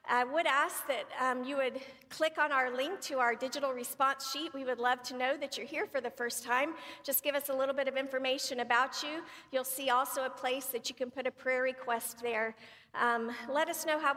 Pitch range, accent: 230-265 Hz, American